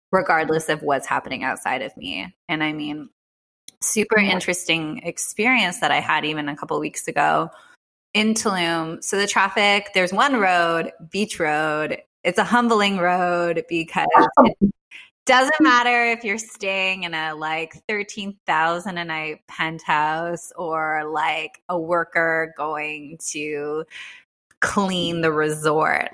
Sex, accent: female, American